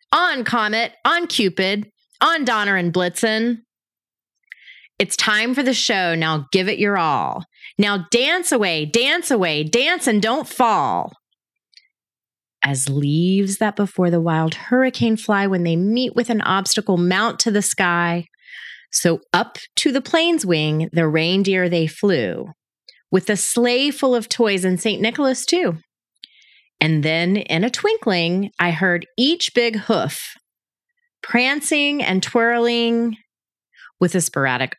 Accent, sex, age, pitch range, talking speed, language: American, female, 30-49, 175-245 Hz, 140 wpm, English